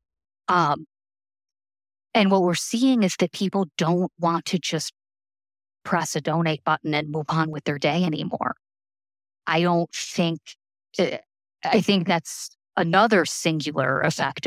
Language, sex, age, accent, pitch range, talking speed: English, female, 30-49, American, 145-170 Hz, 135 wpm